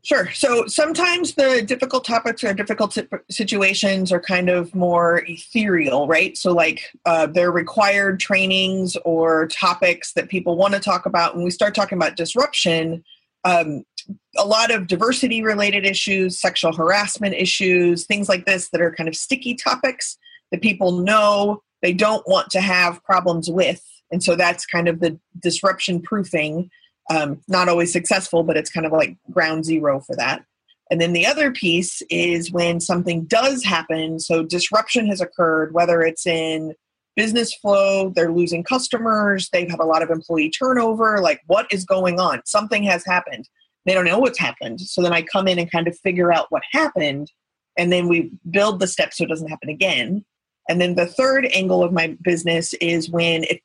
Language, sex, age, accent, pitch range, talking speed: English, female, 30-49, American, 170-210 Hz, 180 wpm